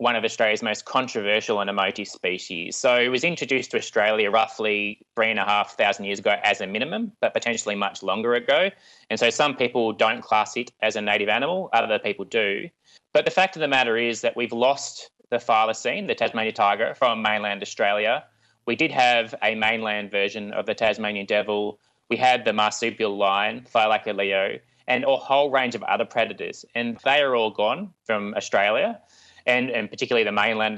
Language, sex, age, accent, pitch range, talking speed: English, male, 20-39, Australian, 105-125 Hz, 190 wpm